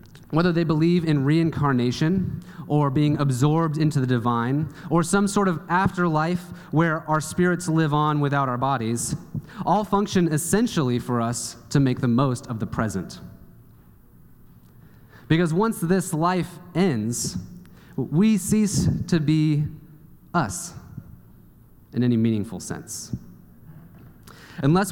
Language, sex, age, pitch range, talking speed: English, male, 30-49, 125-170 Hz, 125 wpm